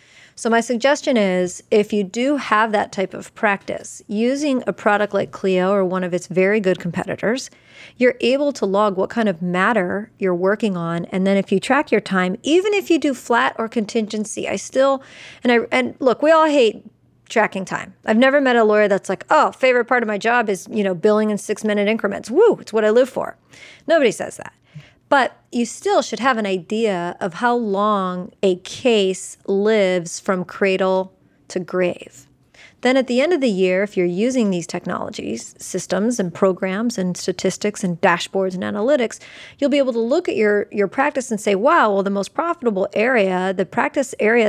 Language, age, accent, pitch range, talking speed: English, 40-59, American, 190-240 Hz, 200 wpm